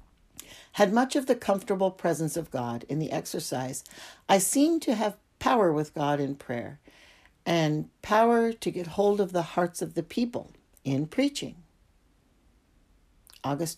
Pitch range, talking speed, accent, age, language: 150-205 Hz, 150 wpm, American, 60-79, English